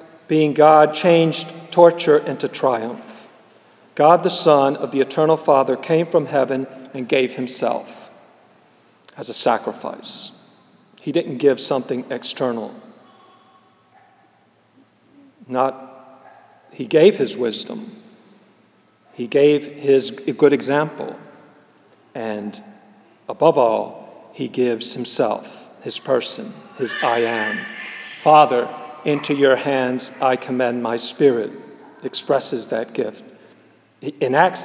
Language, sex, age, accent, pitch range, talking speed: English, male, 50-69, American, 130-160 Hz, 105 wpm